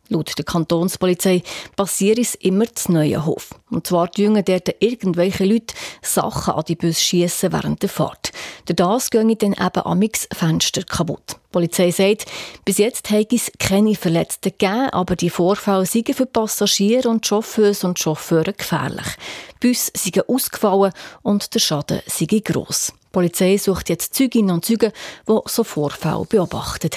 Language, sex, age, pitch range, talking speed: German, female, 30-49, 175-210 Hz, 165 wpm